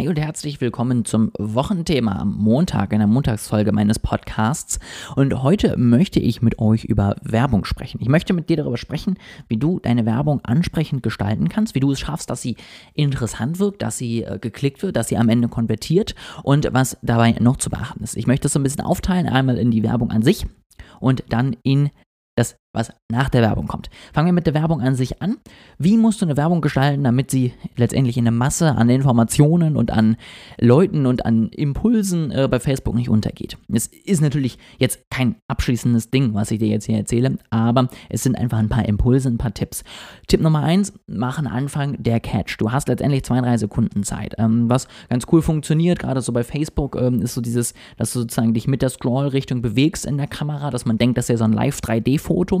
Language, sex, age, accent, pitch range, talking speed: German, male, 20-39, German, 115-145 Hz, 210 wpm